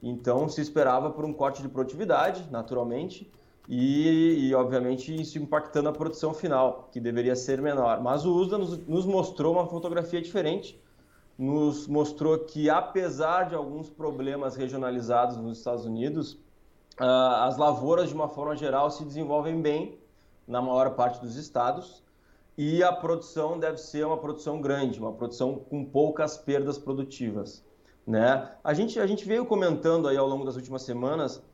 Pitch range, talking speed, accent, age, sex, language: 130-160 Hz, 160 wpm, Brazilian, 20-39, male, Portuguese